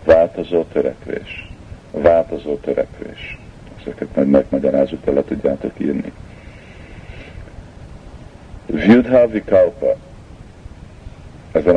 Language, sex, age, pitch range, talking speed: Hungarian, male, 50-69, 80-95 Hz, 70 wpm